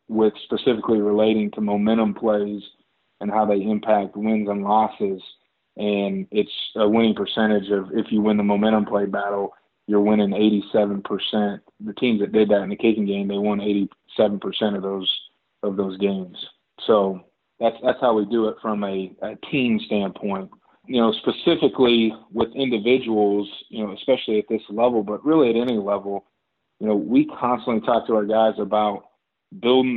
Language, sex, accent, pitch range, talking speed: English, male, American, 105-115 Hz, 170 wpm